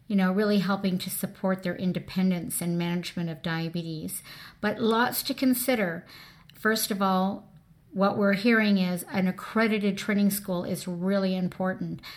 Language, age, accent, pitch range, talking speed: English, 50-69, American, 175-210 Hz, 150 wpm